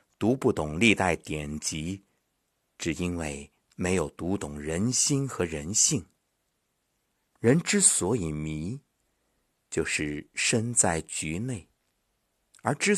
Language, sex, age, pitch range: Chinese, male, 50-69, 80-130 Hz